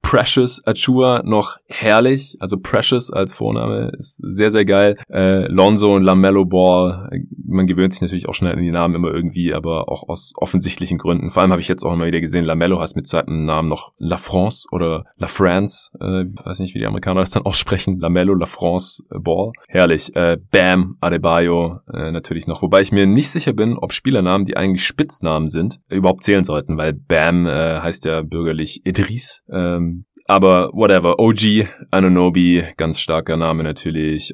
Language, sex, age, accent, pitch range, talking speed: German, male, 20-39, German, 85-100 Hz, 185 wpm